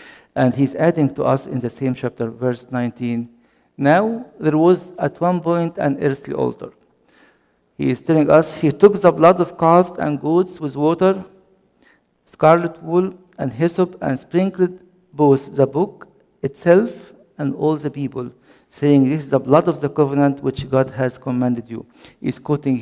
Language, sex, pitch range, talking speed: English, male, 125-160 Hz, 165 wpm